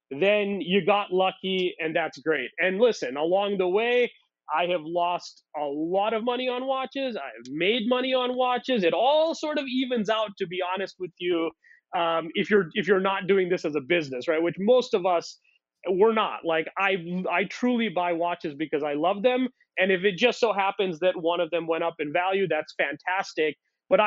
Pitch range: 170-210 Hz